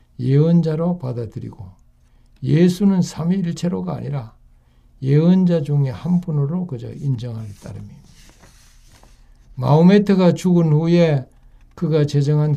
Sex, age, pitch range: male, 60-79, 105-165 Hz